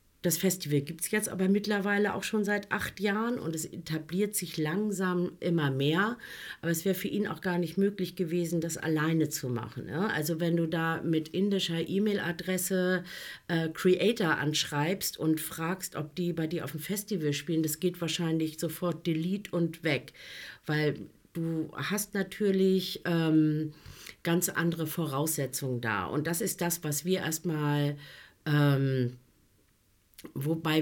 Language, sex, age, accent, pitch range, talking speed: German, female, 50-69, German, 160-195 Hz, 155 wpm